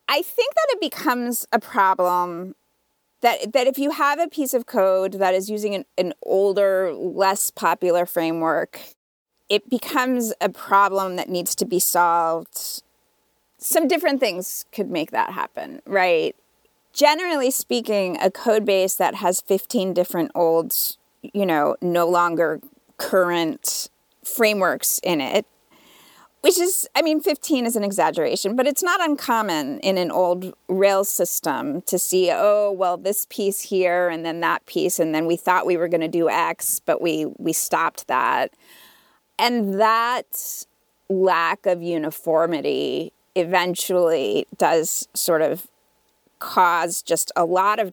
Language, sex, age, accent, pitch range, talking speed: English, female, 30-49, American, 175-255 Hz, 145 wpm